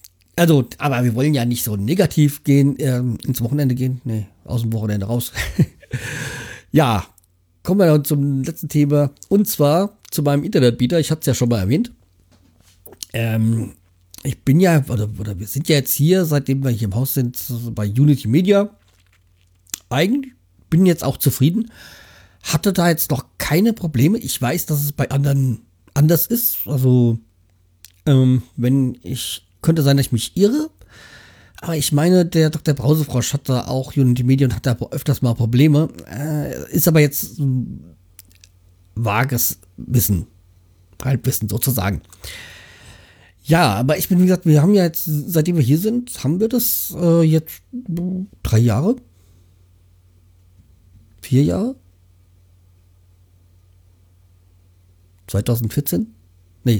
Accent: German